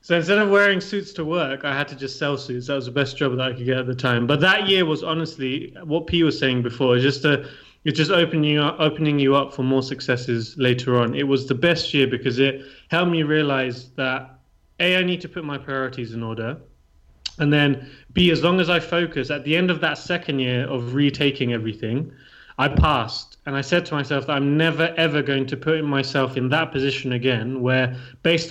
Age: 20-39